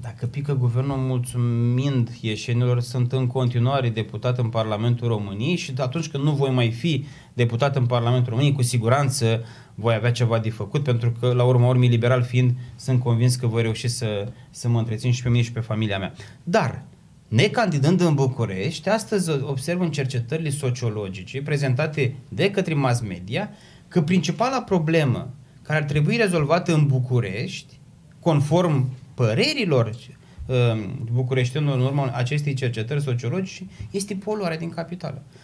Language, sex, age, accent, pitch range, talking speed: Romanian, male, 20-39, native, 120-160 Hz, 150 wpm